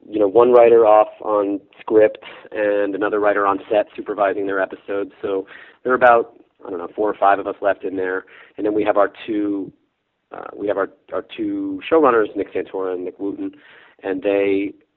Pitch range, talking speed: 95-120 Hz, 200 wpm